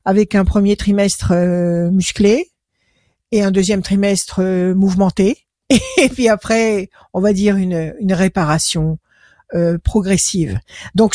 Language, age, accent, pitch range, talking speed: French, 50-69, French, 200-250 Hz, 115 wpm